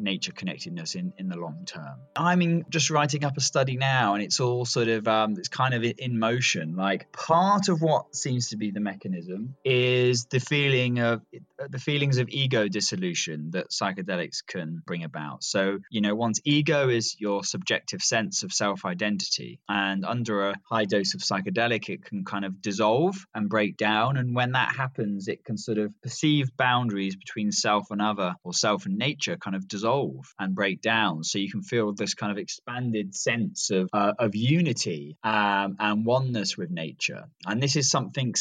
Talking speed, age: 185 wpm, 20-39